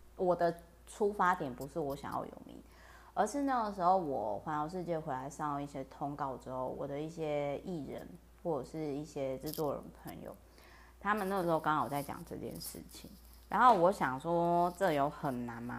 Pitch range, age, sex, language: 135-170 Hz, 30-49, female, Chinese